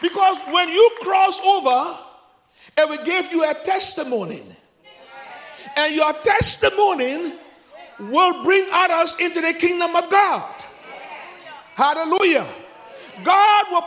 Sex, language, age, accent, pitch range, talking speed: male, English, 50-69, Nigerian, 310-380 Hz, 110 wpm